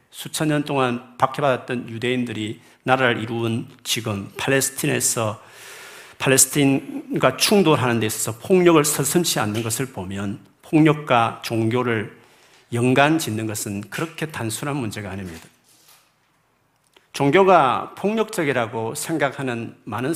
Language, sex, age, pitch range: Korean, male, 40-59, 115-160 Hz